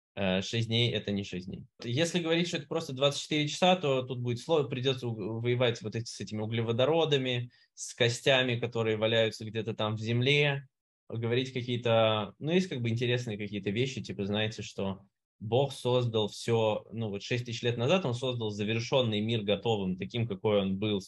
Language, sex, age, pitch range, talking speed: Russian, male, 20-39, 105-130 Hz, 180 wpm